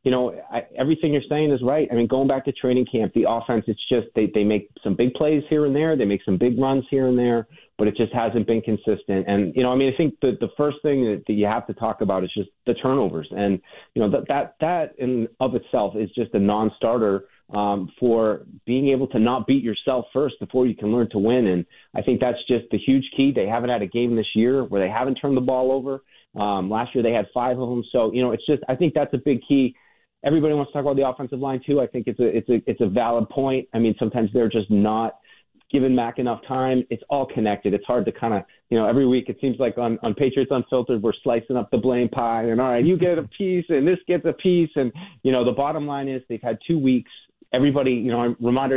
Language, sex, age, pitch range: English, male, 30-49, 115-135 Hz